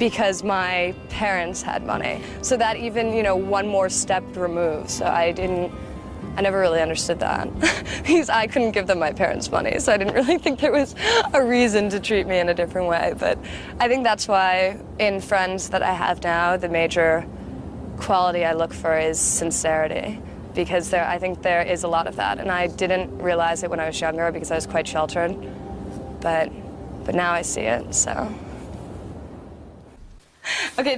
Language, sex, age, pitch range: English, female, 20-39, 175-245 Hz